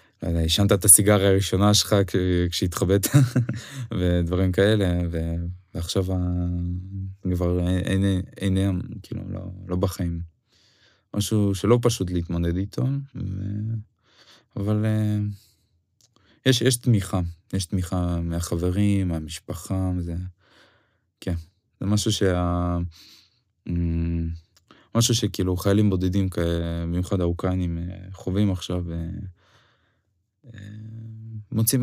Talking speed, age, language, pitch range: 95 wpm, 20-39, Hebrew, 90-105 Hz